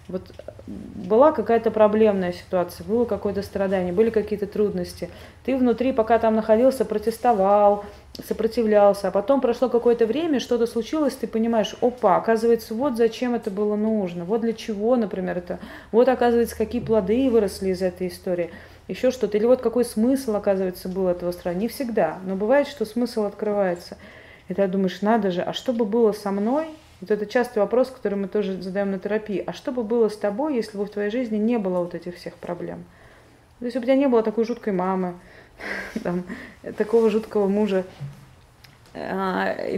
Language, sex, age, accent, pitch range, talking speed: Russian, female, 30-49, native, 195-230 Hz, 170 wpm